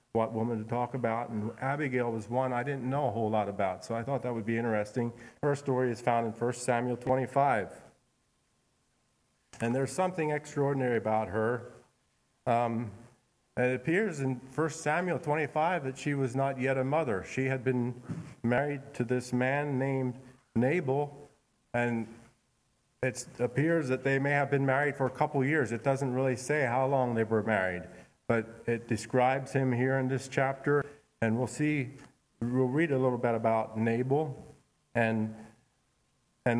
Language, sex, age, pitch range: English, male, 40-59, 115-140 Hz